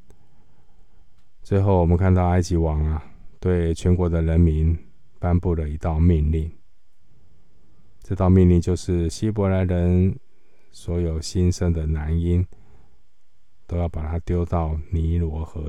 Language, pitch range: Chinese, 80-90 Hz